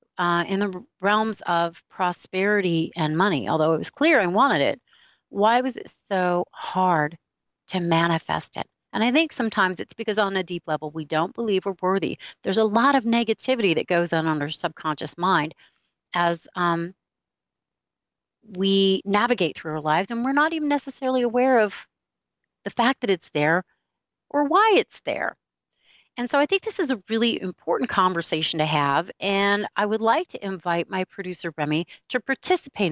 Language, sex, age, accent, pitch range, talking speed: English, female, 40-59, American, 170-230 Hz, 175 wpm